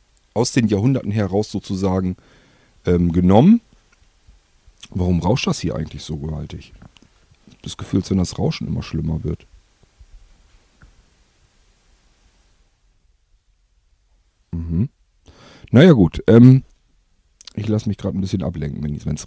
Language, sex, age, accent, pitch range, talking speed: German, male, 40-59, German, 95-120 Hz, 110 wpm